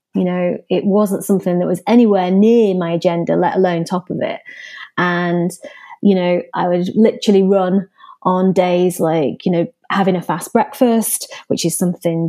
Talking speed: 170 wpm